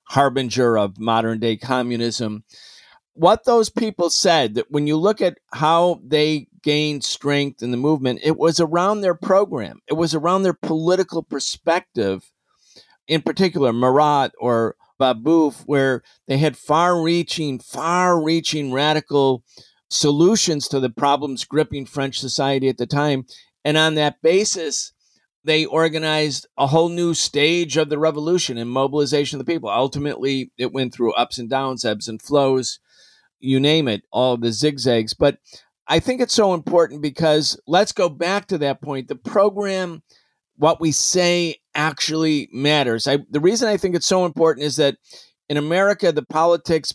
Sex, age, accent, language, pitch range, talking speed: male, 50-69, American, English, 130-165 Hz, 150 wpm